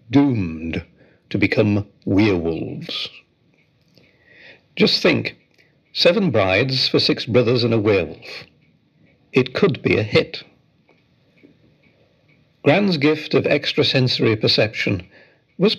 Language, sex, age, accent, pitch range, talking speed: English, male, 60-79, British, 95-125 Hz, 95 wpm